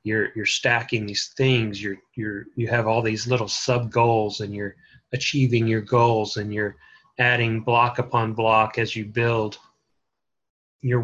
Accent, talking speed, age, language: American, 160 wpm, 30-49, English